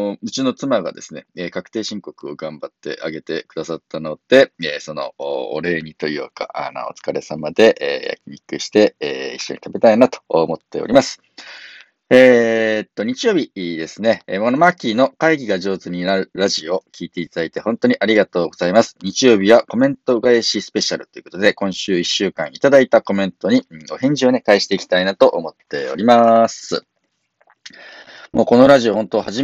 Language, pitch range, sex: Japanese, 95-140 Hz, male